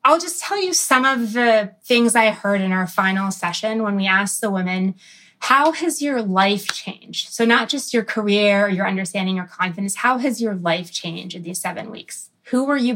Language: English